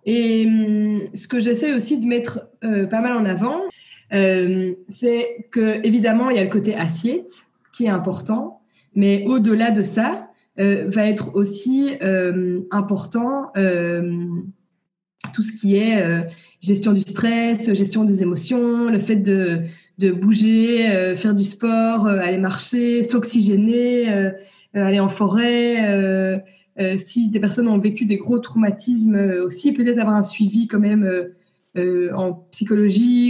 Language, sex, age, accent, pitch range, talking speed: French, female, 20-39, French, 185-225 Hz, 155 wpm